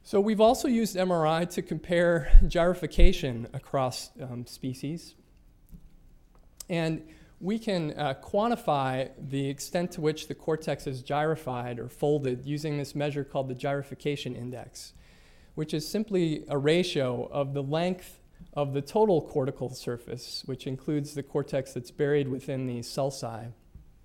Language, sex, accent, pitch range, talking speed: English, male, American, 130-155 Hz, 135 wpm